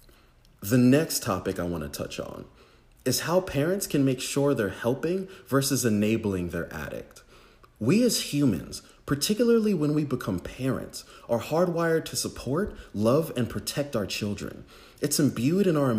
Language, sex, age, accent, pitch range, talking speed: English, male, 30-49, American, 115-150 Hz, 150 wpm